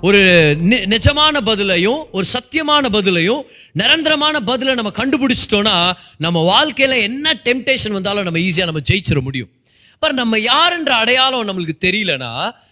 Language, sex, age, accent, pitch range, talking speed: Tamil, male, 30-49, native, 185-275 Hz, 130 wpm